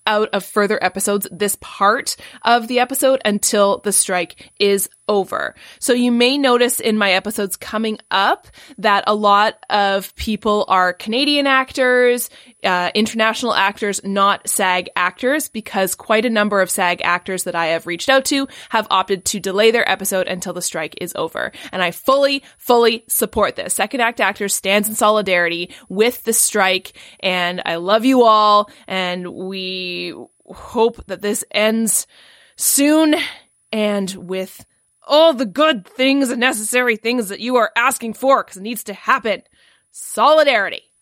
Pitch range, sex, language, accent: 195-240 Hz, female, English, American